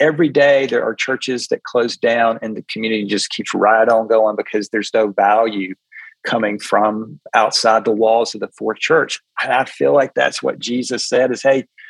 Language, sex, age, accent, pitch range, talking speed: English, male, 40-59, American, 110-130 Hz, 195 wpm